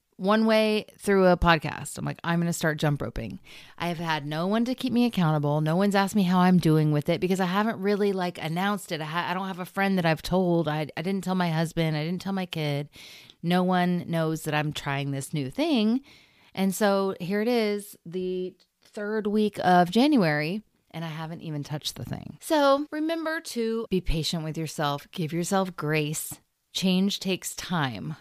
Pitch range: 155-195 Hz